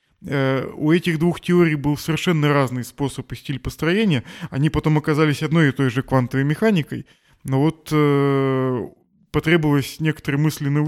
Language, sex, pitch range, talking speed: Russian, male, 125-155 Hz, 150 wpm